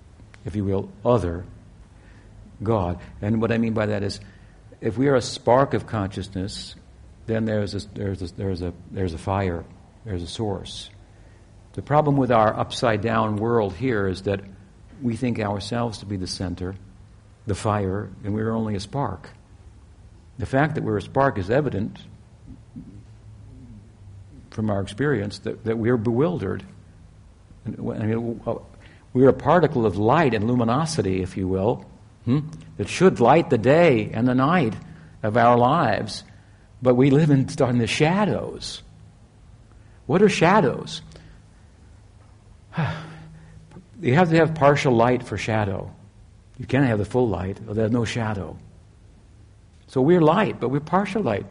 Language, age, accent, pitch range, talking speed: English, 60-79, American, 100-125 Hz, 160 wpm